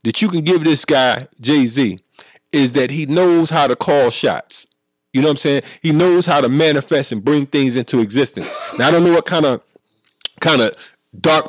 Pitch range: 125-160 Hz